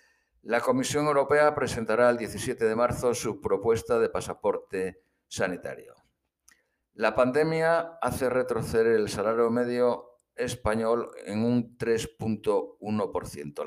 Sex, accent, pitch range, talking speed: male, Spanish, 100-130 Hz, 105 wpm